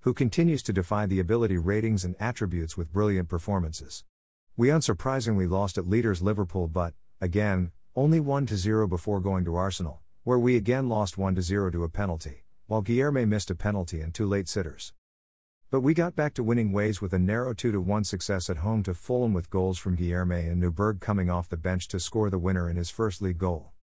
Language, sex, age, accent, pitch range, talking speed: English, male, 50-69, American, 90-110 Hz, 195 wpm